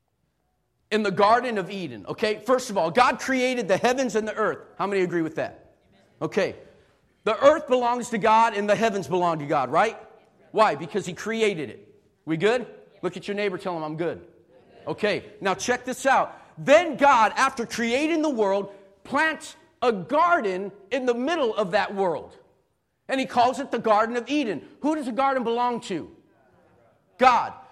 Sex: male